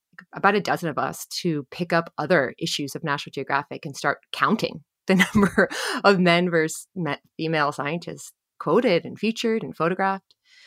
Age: 30-49